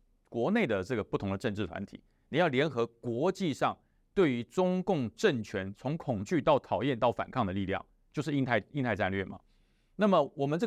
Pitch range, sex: 105-160 Hz, male